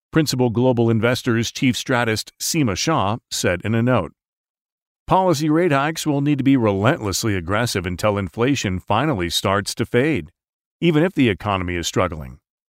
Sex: male